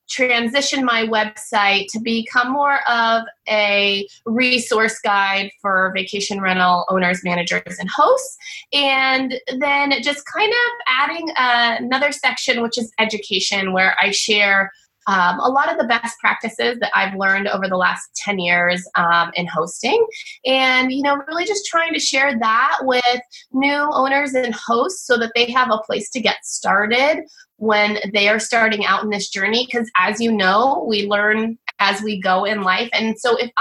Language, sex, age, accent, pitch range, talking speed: English, female, 20-39, American, 200-265 Hz, 170 wpm